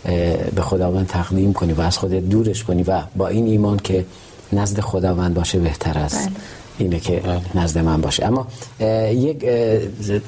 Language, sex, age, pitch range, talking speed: Persian, male, 40-59, 95-110 Hz, 150 wpm